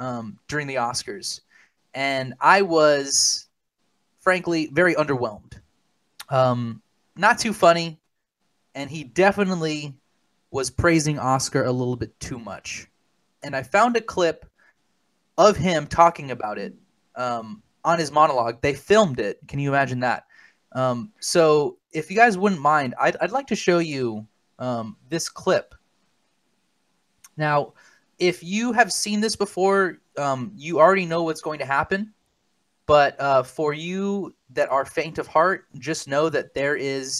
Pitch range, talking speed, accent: 125-165 Hz, 145 wpm, American